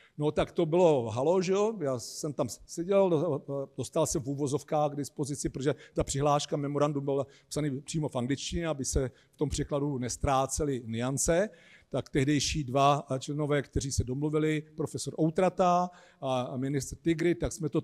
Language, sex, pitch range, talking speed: Czech, male, 135-175 Hz, 160 wpm